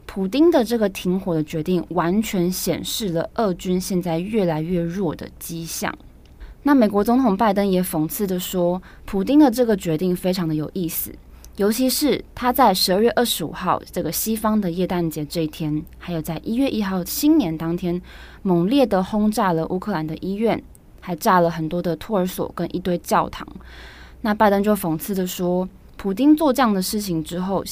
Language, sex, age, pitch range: Chinese, female, 20-39, 165-215 Hz